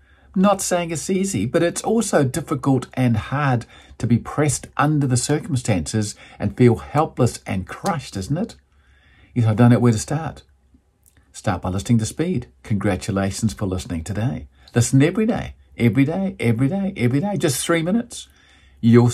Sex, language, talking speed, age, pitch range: male, English, 165 wpm, 50-69, 100-140 Hz